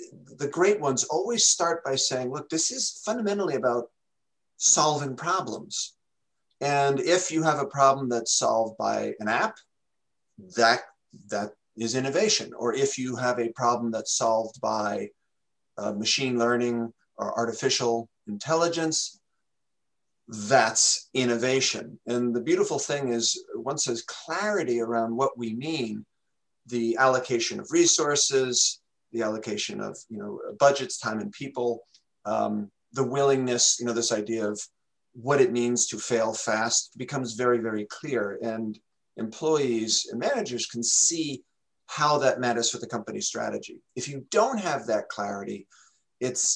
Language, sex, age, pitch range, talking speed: English, male, 50-69, 115-135 Hz, 140 wpm